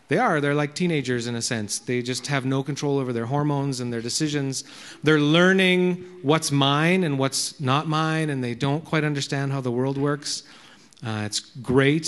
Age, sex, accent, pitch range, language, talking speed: 40-59, male, American, 135-180 Hz, English, 195 wpm